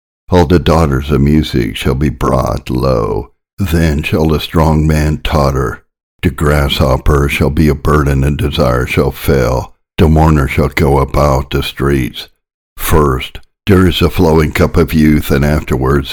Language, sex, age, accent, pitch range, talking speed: English, male, 60-79, American, 70-80 Hz, 155 wpm